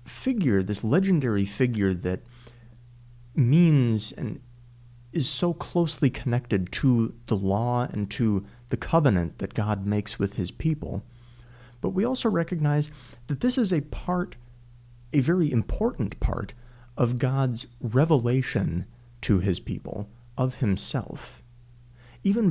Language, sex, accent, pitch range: English, male, American, 110-135 Hz